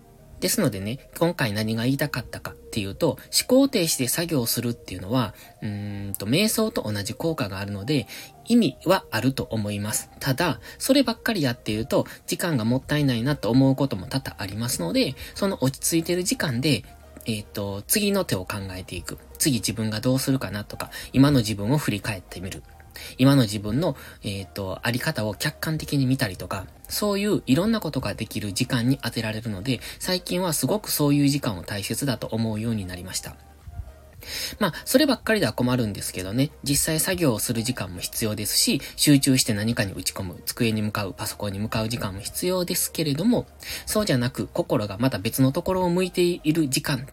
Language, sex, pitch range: Japanese, male, 105-145 Hz